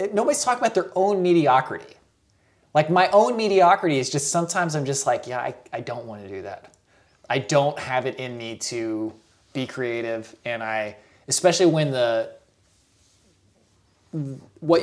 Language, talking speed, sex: English, 160 wpm, male